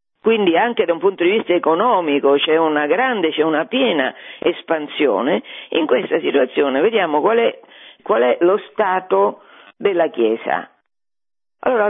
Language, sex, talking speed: Italian, female, 140 wpm